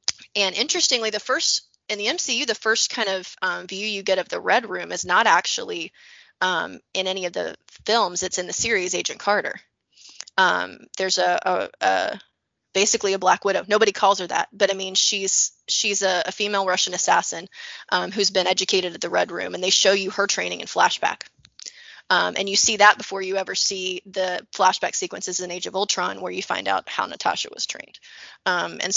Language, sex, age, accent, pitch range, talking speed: English, female, 20-39, American, 190-220 Hz, 205 wpm